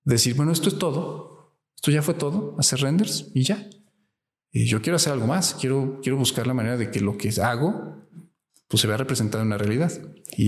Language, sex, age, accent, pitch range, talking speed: Spanish, male, 40-59, Mexican, 115-145 Hz, 210 wpm